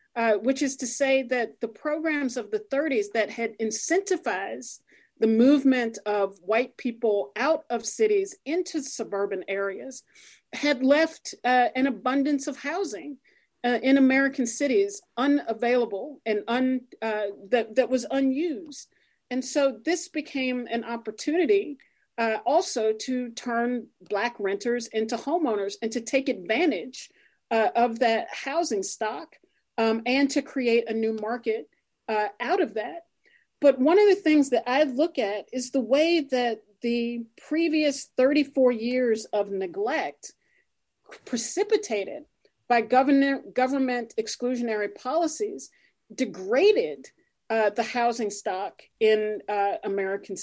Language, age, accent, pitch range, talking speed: English, 40-59, American, 225-290 Hz, 130 wpm